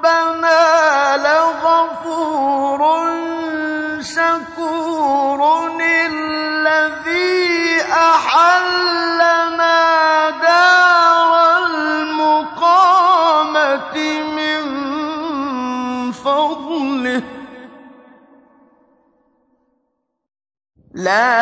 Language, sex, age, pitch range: Arabic, male, 30-49, 255-310 Hz